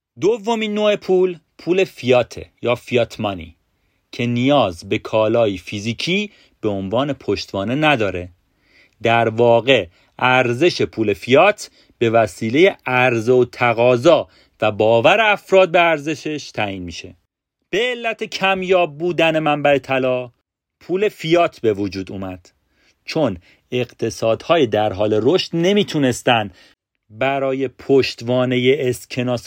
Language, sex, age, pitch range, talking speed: Persian, male, 40-59, 110-145 Hz, 110 wpm